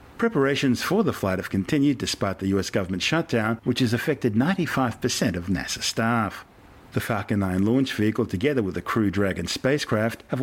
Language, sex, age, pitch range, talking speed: English, male, 50-69, 95-125 Hz, 180 wpm